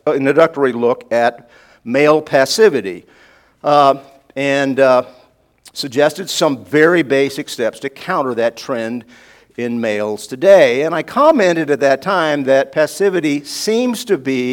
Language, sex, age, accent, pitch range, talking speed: English, male, 50-69, American, 125-170 Hz, 130 wpm